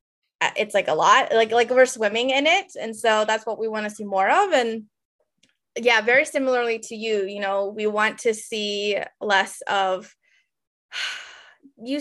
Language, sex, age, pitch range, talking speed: English, female, 20-39, 205-255 Hz, 175 wpm